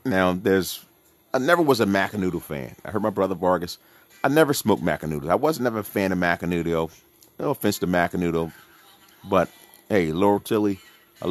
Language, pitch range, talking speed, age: English, 90-120 Hz, 180 wpm, 40-59